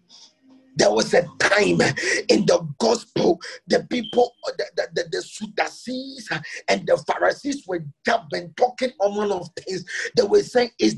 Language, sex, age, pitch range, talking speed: English, male, 40-59, 175-275 Hz, 135 wpm